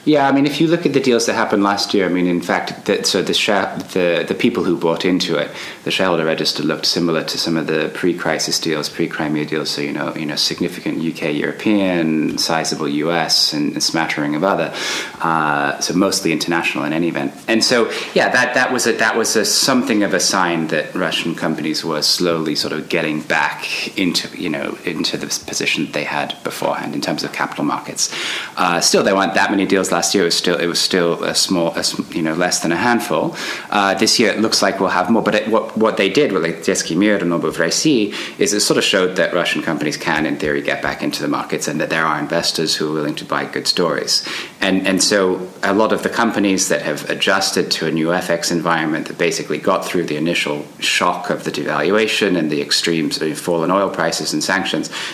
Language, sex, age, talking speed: English, male, 30-49, 225 wpm